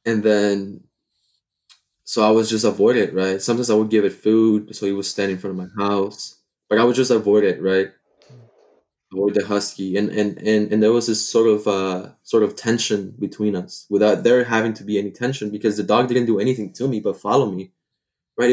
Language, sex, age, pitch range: English, male, 20-39, 95-110 Hz